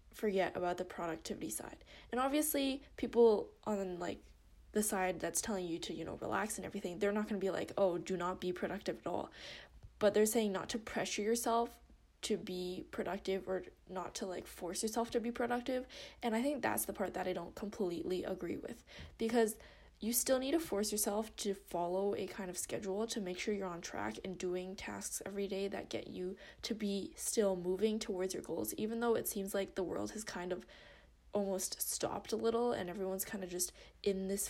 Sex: female